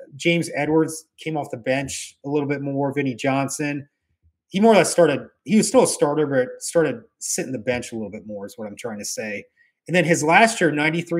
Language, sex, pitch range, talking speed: English, male, 135-165 Hz, 230 wpm